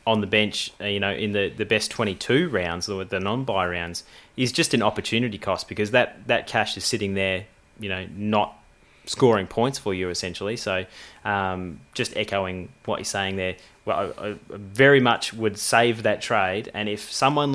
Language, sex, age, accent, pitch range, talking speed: English, male, 20-39, Australian, 95-120 Hz, 190 wpm